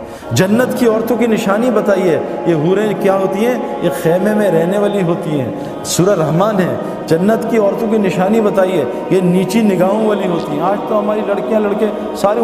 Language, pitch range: Urdu, 185-235 Hz